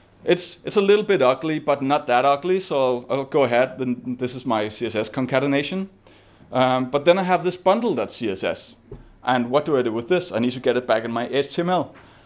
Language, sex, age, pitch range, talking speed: English, male, 30-49, 120-150 Hz, 220 wpm